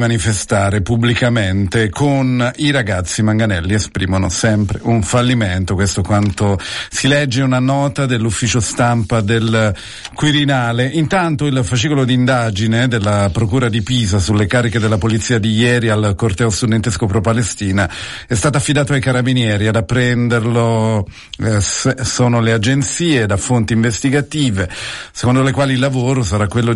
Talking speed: 135 wpm